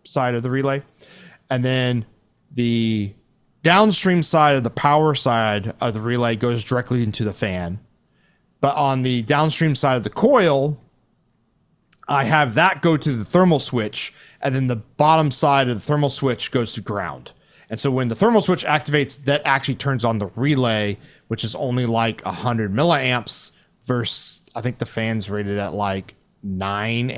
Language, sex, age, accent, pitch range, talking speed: English, male, 30-49, American, 115-145 Hz, 170 wpm